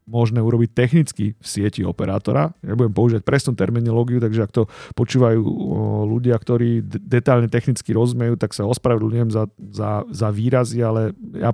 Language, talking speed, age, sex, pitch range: Slovak, 155 wpm, 40-59, male, 110-130 Hz